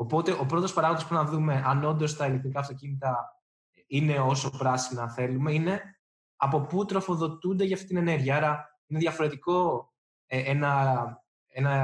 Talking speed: 145 wpm